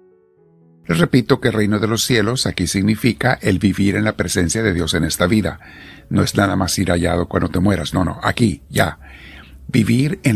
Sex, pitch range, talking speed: male, 85-115 Hz, 205 wpm